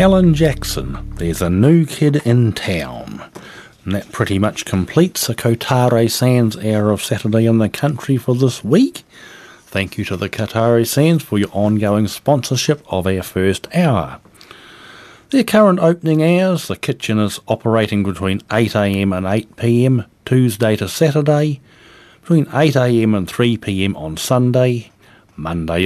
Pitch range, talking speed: 95-135 Hz, 140 wpm